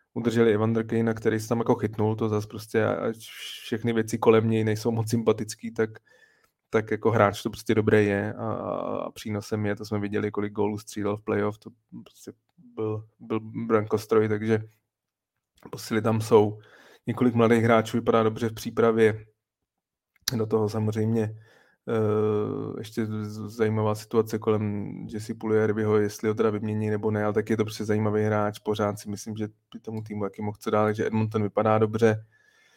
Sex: male